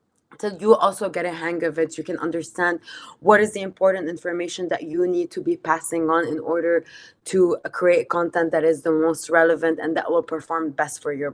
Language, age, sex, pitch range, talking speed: English, 20-39, female, 160-200 Hz, 210 wpm